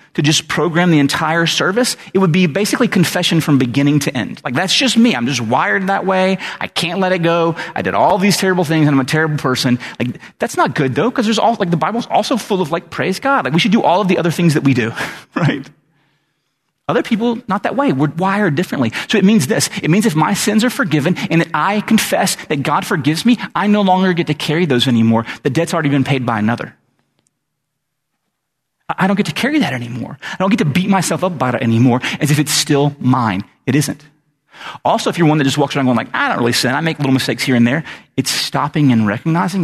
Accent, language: American, English